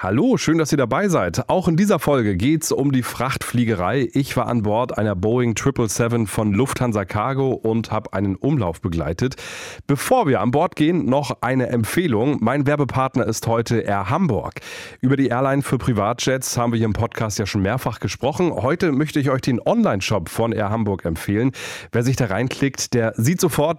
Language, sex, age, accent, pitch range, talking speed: German, male, 30-49, German, 115-145 Hz, 190 wpm